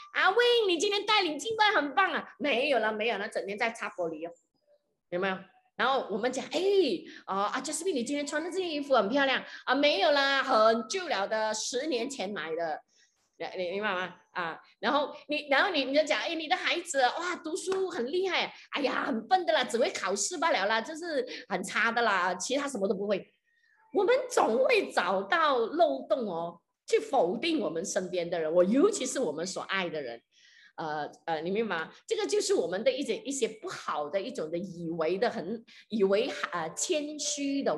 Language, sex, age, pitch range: Chinese, female, 20-39, 195-305 Hz